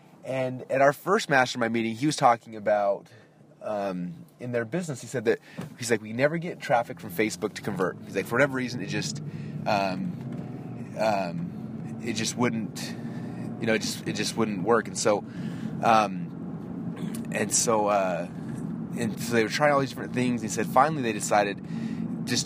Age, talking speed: 30-49, 180 wpm